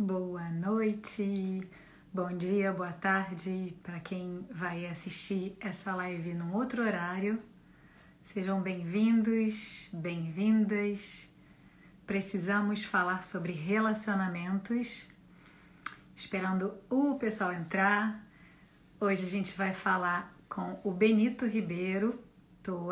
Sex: female